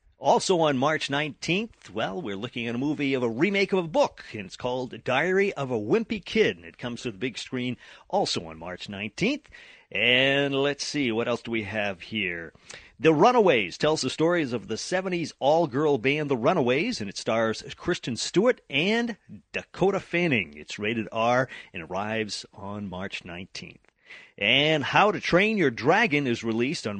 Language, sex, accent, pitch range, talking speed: English, male, American, 115-175 Hz, 180 wpm